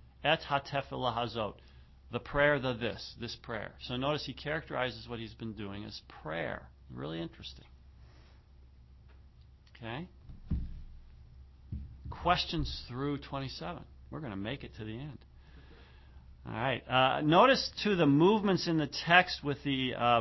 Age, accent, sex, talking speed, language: 40-59, American, male, 130 wpm, English